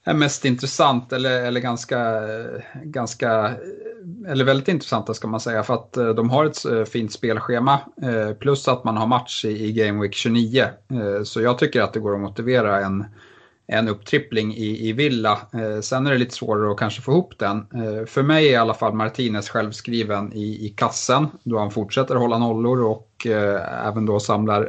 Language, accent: Swedish, Norwegian